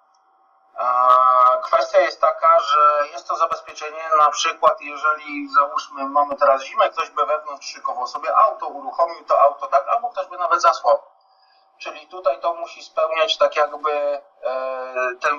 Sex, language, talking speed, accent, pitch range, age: male, Polish, 145 wpm, native, 135-160 Hz, 30-49